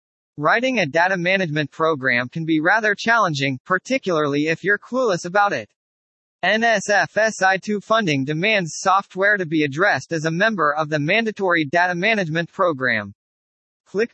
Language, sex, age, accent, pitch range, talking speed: English, male, 40-59, American, 155-210 Hz, 135 wpm